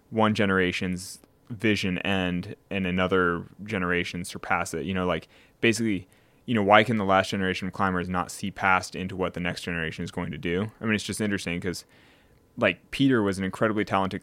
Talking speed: 195 wpm